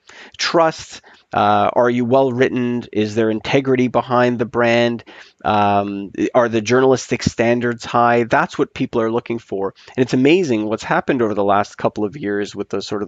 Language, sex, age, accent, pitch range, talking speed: English, male, 30-49, American, 105-120 Hz, 180 wpm